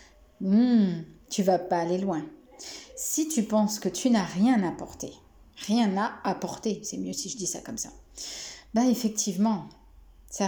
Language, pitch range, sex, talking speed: French, 185-240 Hz, female, 160 wpm